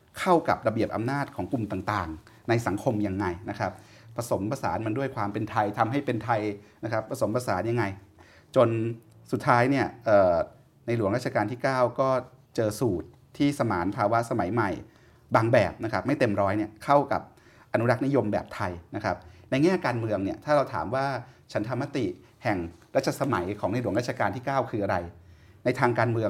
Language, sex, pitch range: Thai, male, 100-125 Hz